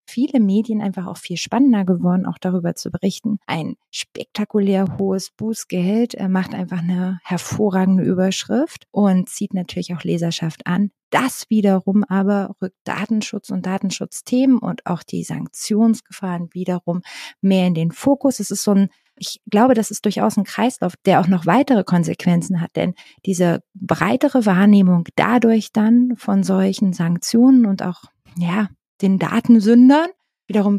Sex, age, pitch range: female, 30-49, 180-215 Hz